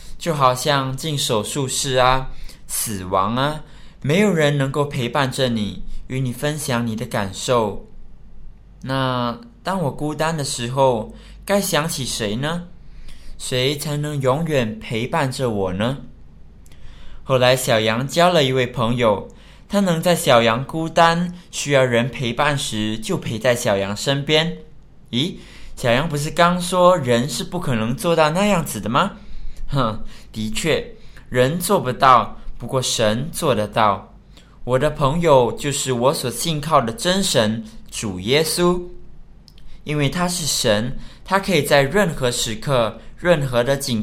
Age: 20-39